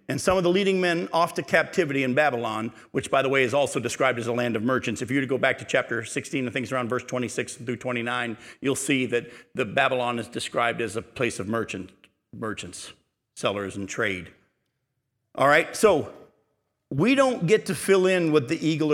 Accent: American